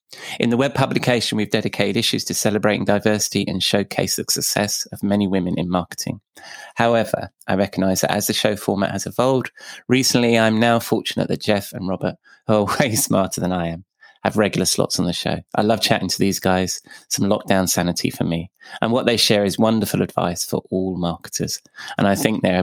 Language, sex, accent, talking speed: English, male, British, 200 wpm